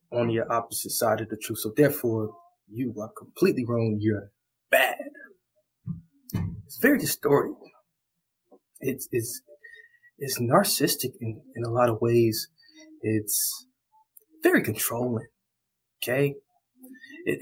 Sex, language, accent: male, English, American